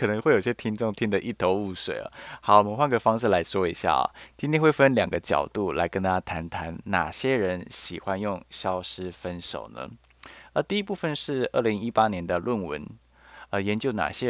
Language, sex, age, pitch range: Chinese, male, 20-39, 85-115 Hz